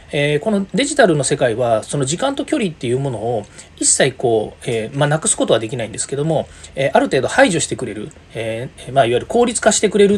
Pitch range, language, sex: 150-220 Hz, Japanese, male